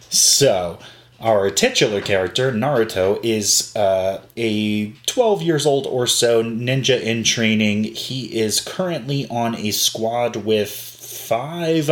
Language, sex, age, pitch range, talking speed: English, male, 30-49, 105-125 Hz, 120 wpm